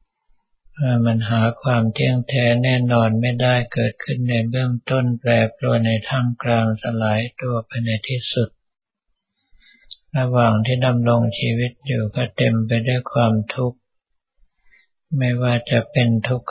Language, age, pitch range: Thai, 60-79, 115-130 Hz